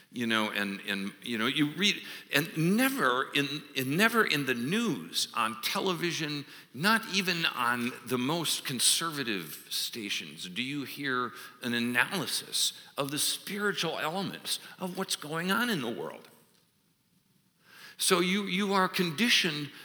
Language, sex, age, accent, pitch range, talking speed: English, male, 60-79, American, 135-200 Hz, 140 wpm